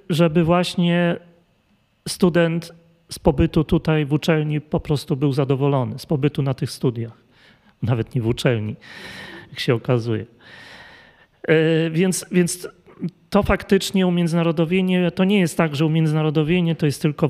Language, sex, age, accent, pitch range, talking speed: Polish, male, 40-59, native, 135-170 Hz, 135 wpm